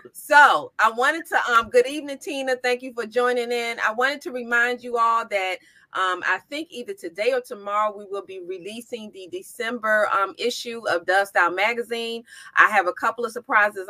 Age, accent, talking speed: 30-49, American, 195 wpm